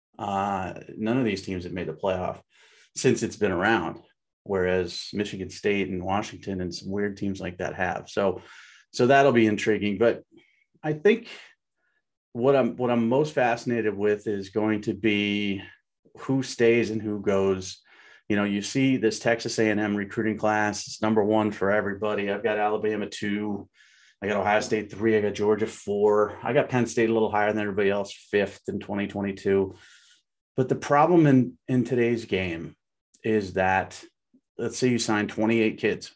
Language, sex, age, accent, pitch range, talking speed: English, male, 30-49, American, 100-115 Hz, 175 wpm